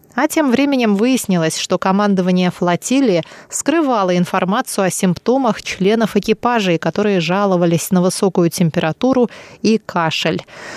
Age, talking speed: 20-39, 110 wpm